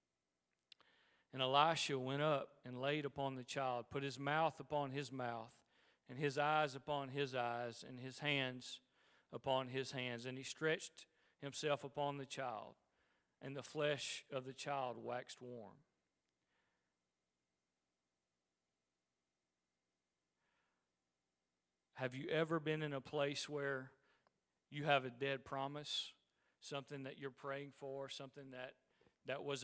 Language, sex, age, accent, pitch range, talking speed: English, male, 40-59, American, 125-145 Hz, 130 wpm